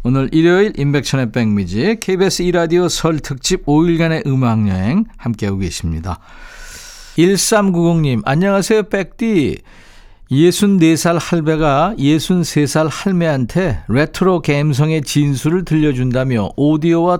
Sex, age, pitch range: male, 50-69, 120-175 Hz